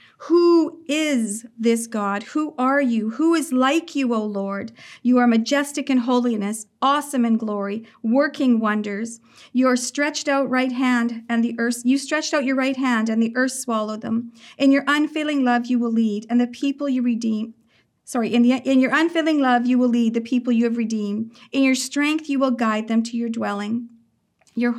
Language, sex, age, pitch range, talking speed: English, female, 50-69, 230-275 Hz, 195 wpm